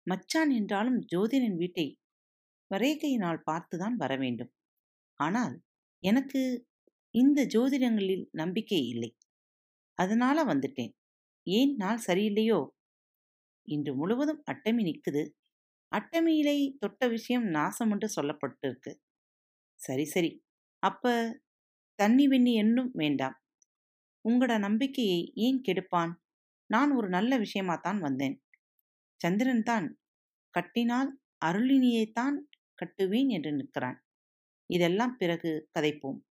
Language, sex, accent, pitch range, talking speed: Tamil, female, native, 160-245 Hz, 90 wpm